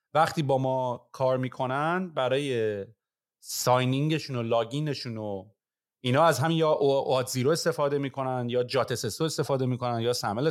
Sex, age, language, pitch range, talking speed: male, 30-49, Persian, 125-165 Hz, 130 wpm